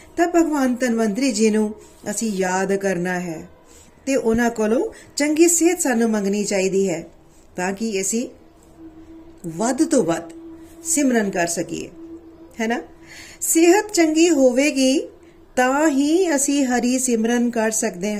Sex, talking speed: female, 125 wpm